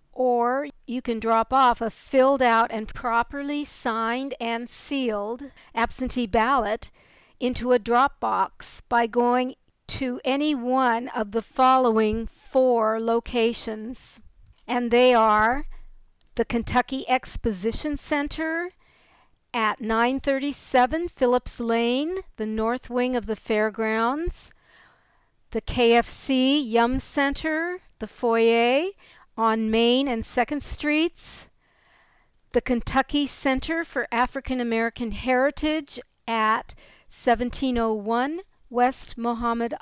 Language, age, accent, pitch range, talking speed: English, 50-69, American, 230-270 Hz, 100 wpm